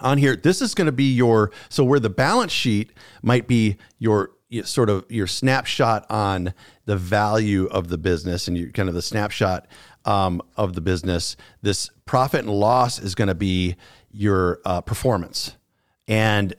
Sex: male